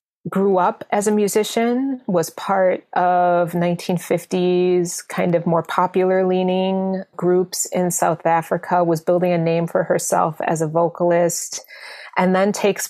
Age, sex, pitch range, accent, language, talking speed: 30-49, female, 170-195 Hz, American, English, 140 wpm